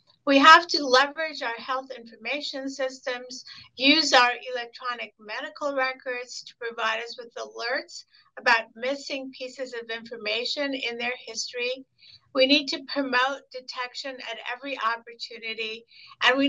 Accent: American